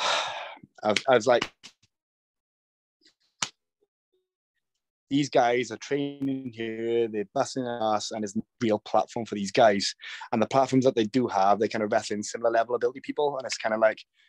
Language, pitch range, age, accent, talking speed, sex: English, 105-125 Hz, 20-39, British, 170 wpm, male